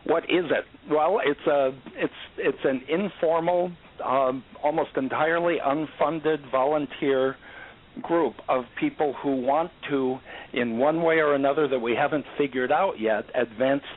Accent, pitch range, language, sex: American, 120-145 Hz, English, male